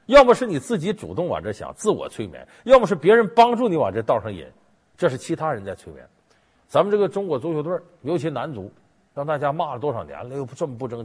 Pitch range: 115-195 Hz